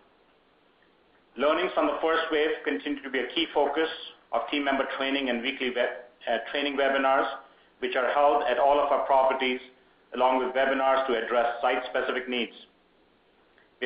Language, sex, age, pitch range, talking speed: English, male, 50-69, 125-145 Hz, 155 wpm